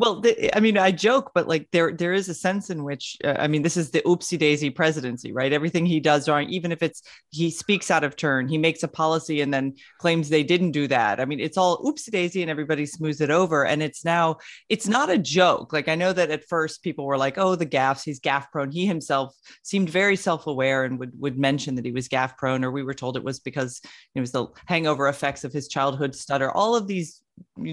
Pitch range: 140-190 Hz